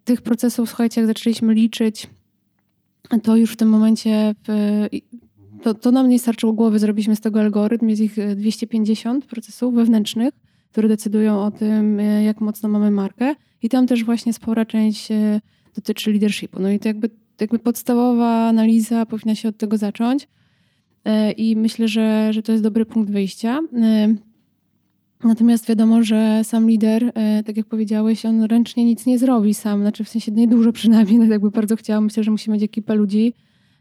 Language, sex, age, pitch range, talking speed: Polish, female, 20-39, 215-235 Hz, 165 wpm